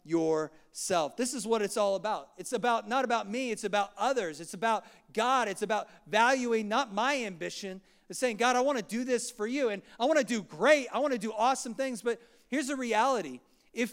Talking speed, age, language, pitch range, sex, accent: 220 wpm, 40-59, English, 200-245 Hz, male, American